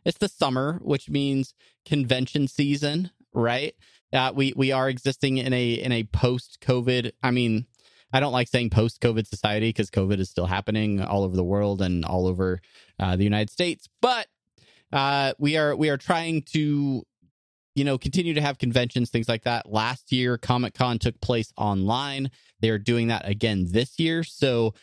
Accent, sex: American, male